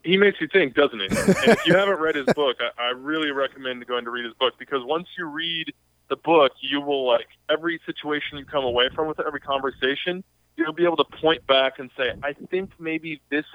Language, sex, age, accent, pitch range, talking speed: English, male, 20-39, American, 125-155 Hz, 230 wpm